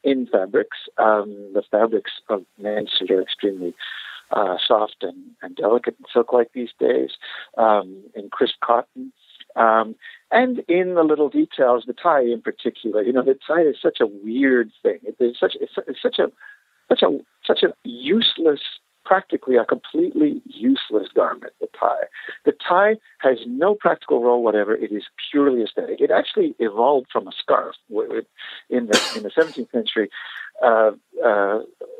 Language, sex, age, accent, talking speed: English, male, 60-79, American, 160 wpm